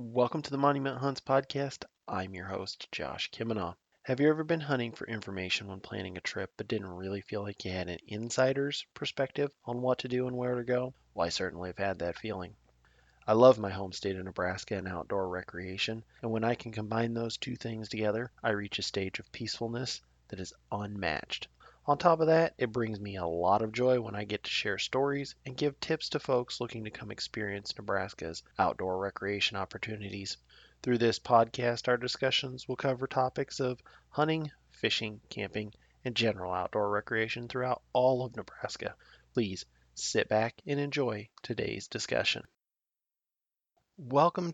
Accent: American